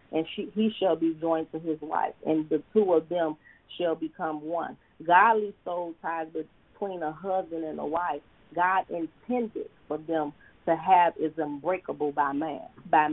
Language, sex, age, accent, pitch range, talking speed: English, female, 40-59, American, 150-175 Hz, 170 wpm